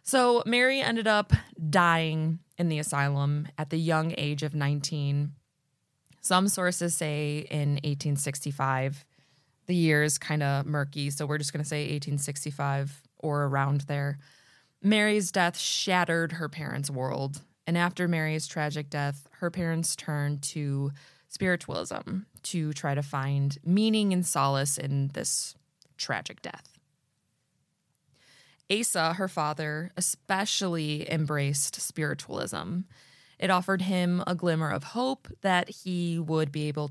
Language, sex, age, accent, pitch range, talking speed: English, female, 20-39, American, 140-175 Hz, 130 wpm